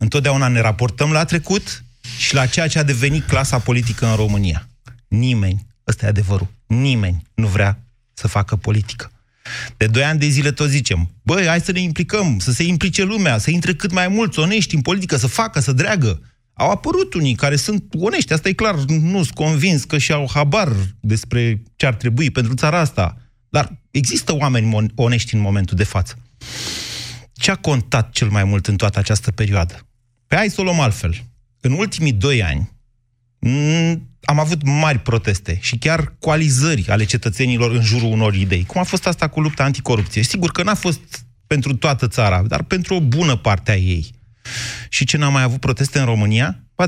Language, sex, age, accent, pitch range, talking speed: Romanian, male, 30-49, native, 110-145 Hz, 190 wpm